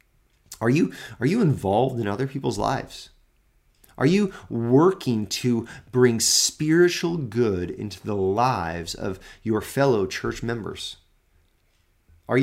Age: 30-49